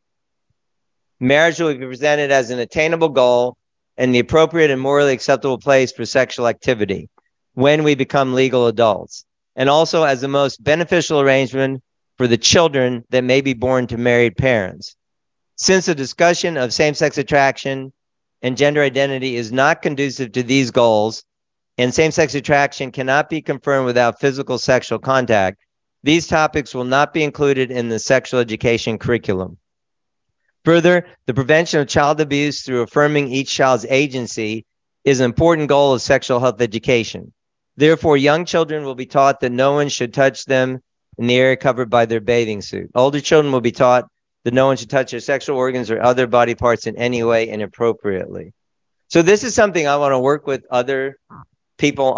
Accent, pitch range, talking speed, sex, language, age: American, 120-145 Hz, 170 wpm, male, English, 50-69